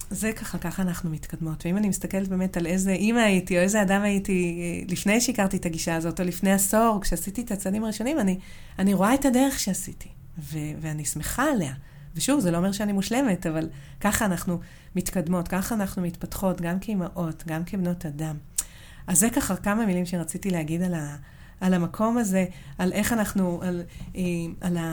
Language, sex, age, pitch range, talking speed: Hebrew, female, 30-49, 175-200 Hz, 180 wpm